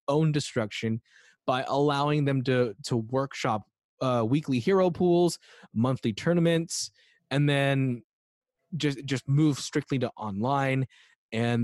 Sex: male